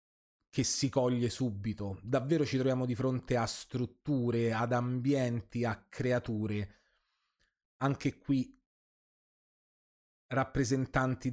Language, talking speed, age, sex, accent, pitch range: Italian, 95 wpm, 30-49, male, native, 120-145 Hz